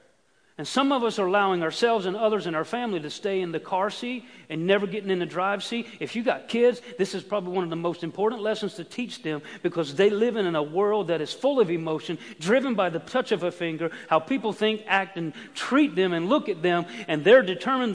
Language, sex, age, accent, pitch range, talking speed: English, male, 40-59, American, 180-250 Hz, 245 wpm